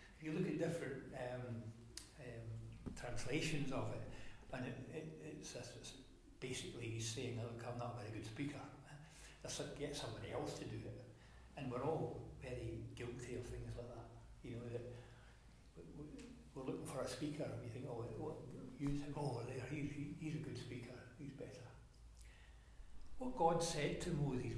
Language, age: English, 60-79